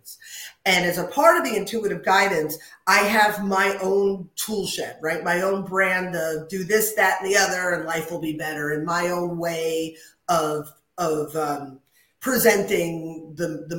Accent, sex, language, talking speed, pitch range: American, female, English, 175 wpm, 175-265 Hz